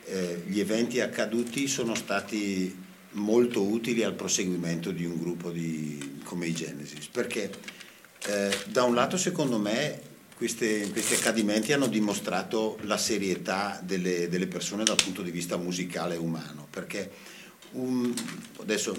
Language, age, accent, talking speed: Italian, 50-69, native, 140 wpm